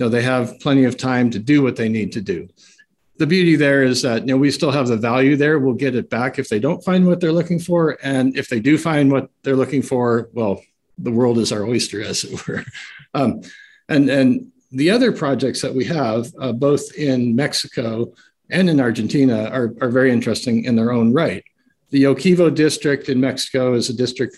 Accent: American